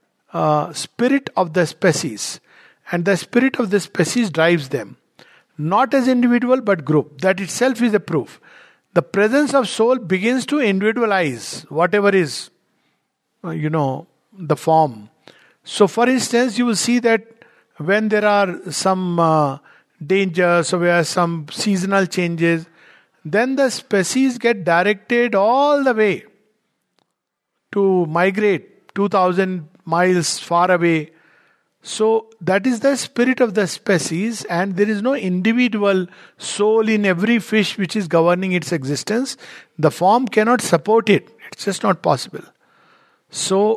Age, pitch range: 50-69, 175-235 Hz